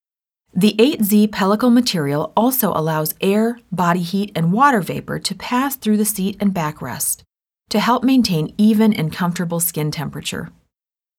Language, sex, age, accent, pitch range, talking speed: English, female, 40-59, American, 165-225 Hz, 145 wpm